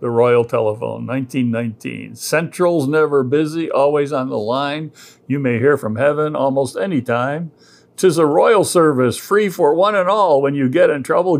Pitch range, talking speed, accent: 135-195 Hz, 180 wpm, American